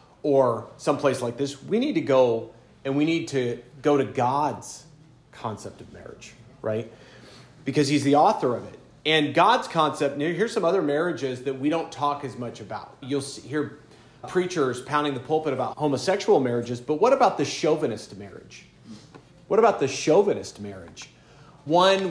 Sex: male